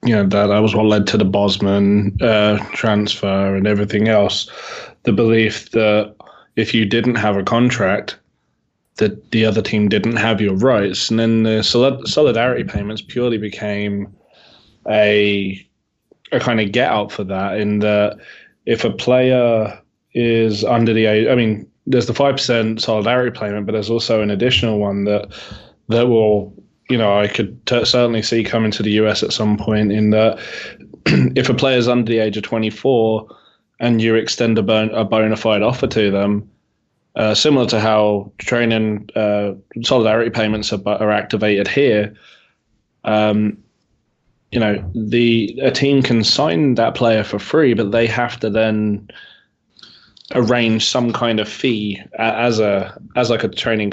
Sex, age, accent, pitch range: male, 20-39, British, 105-115 Hz